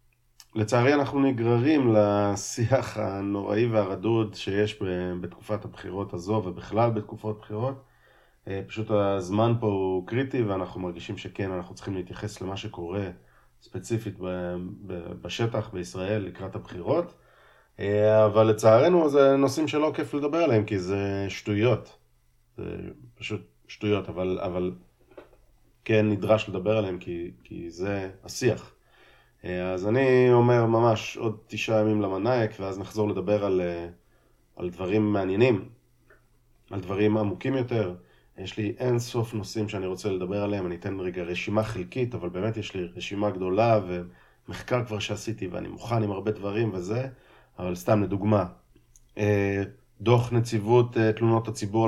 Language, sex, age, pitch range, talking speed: Hebrew, male, 30-49, 95-115 Hz, 125 wpm